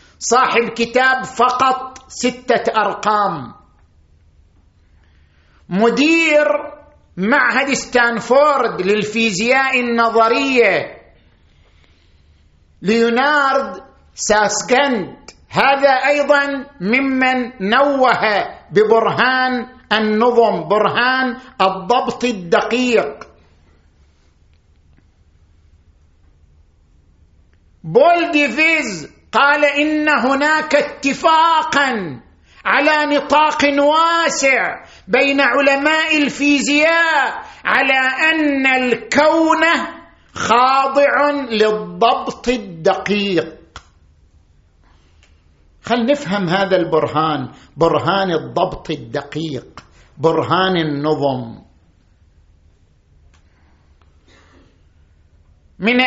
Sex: male